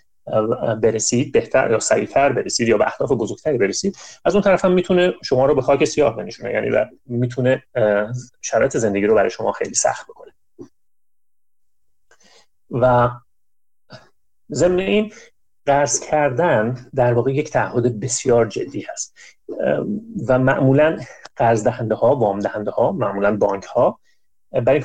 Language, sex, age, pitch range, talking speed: Persian, male, 30-49, 115-160 Hz, 135 wpm